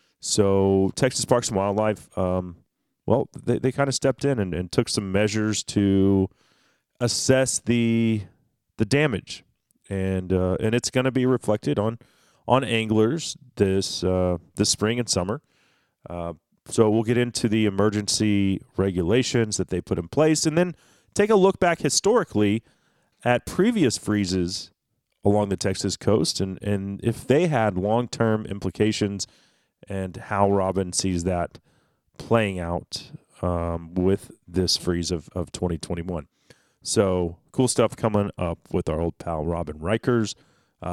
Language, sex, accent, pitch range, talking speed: English, male, American, 95-125 Hz, 145 wpm